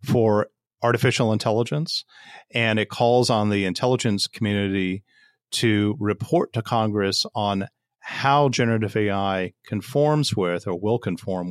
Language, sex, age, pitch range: English, male, 40-59, 100-120 Hz